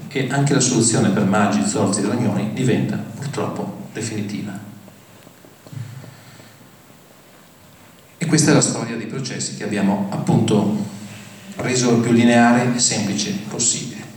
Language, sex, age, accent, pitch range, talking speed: Italian, male, 40-59, native, 105-135 Hz, 125 wpm